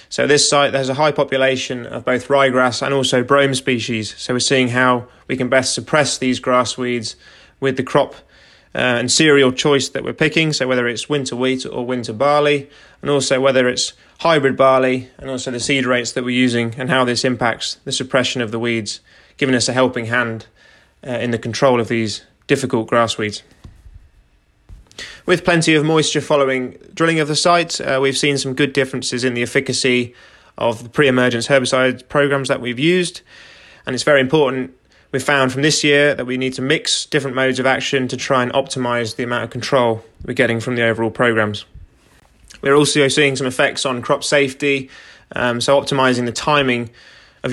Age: 20-39